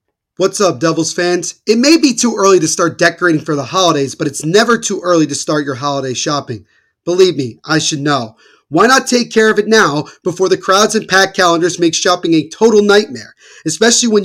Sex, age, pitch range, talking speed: male, 30-49, 165-215 Hz, 210 wpm